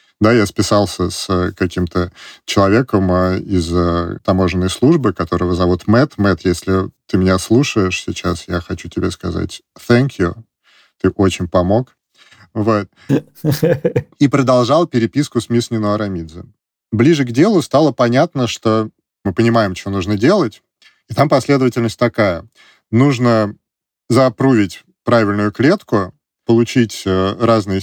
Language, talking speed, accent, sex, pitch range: Russian, 120 wpm, native, male, 95-120 Hz